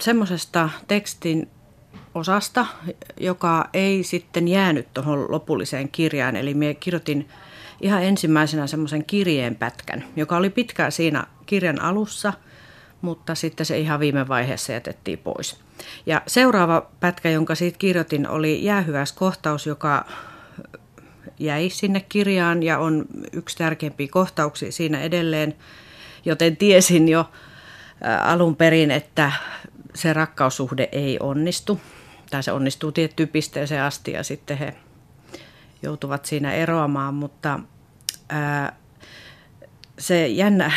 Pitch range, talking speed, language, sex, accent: 145-170 Hz, 115 wpm, Finnish, female, native